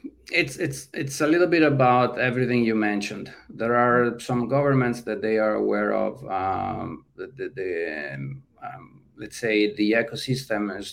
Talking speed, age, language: 165 wpm, 40-59, English